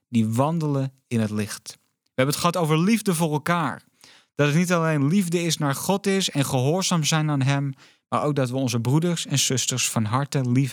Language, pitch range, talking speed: Dutch, 120-160 Hz, 215 wpm